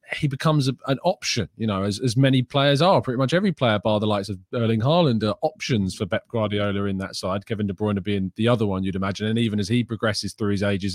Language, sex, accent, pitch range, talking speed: English, male, British, 105-140 Hz, 260 wpm